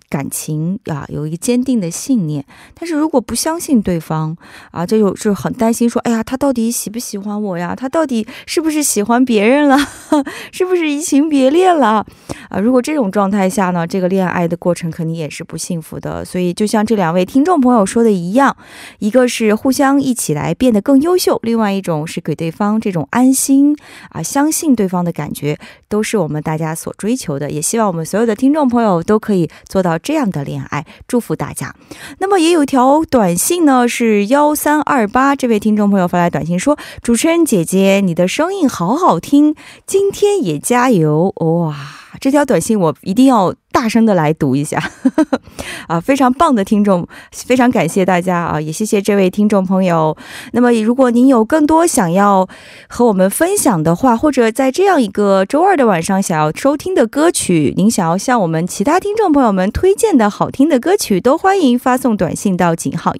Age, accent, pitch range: 20-39, Chinese, 180-270 Hz